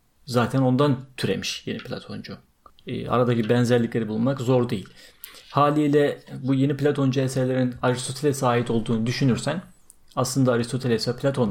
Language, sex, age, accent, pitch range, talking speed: Turkish, male, 40-59, native, 115-145 Hz, 125 wpm